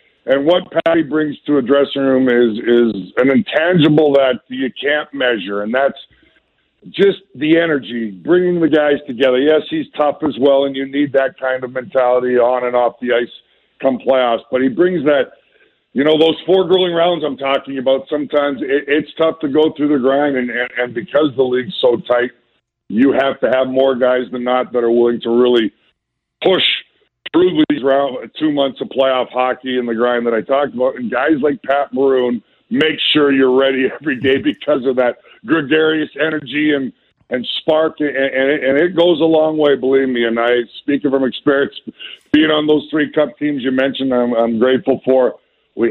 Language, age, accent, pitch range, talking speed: English, 50-69, American, 125-150 Hz, 190 wpm